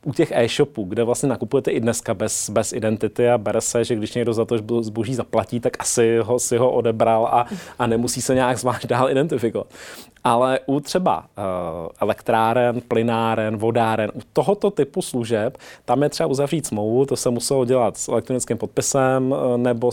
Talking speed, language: 170 wpm, Czech